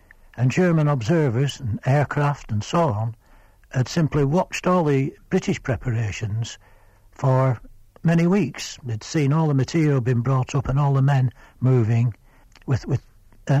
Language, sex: English, male